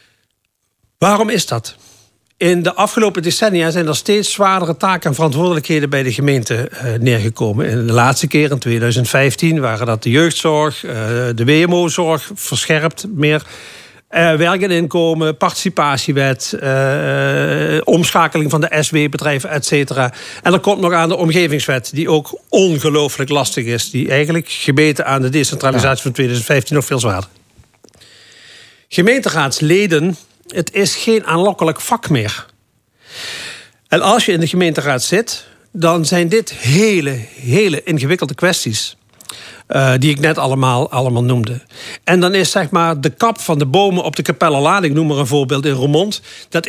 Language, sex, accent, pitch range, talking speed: Dutch, male, Dutch, 135-175 Hz, 140 wpm